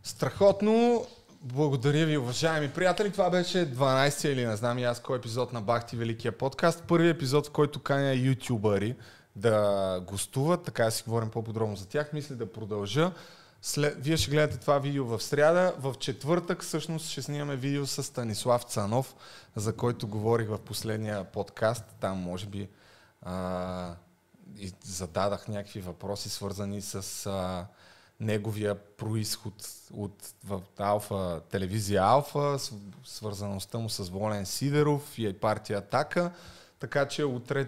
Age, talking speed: 30-49, 140 wpm